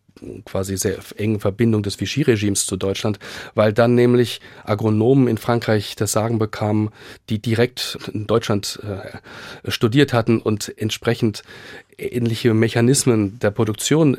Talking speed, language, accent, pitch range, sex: 125 wpm, German, German, 105-130 Hz, male